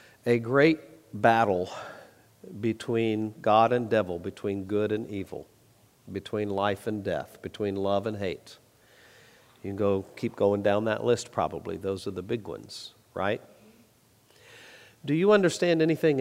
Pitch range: 105-125 Hz